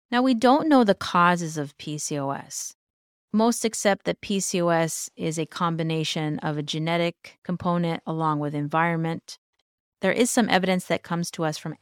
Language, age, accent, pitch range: English, 30-49, American, 155-200 Hz